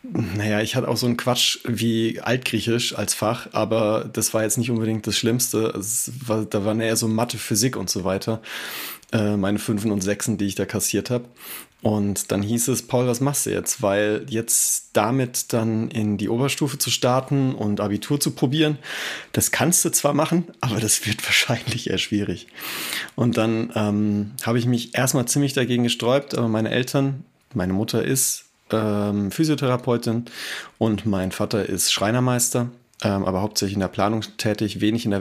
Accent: German